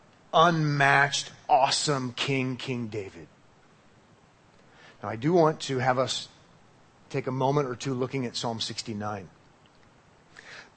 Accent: American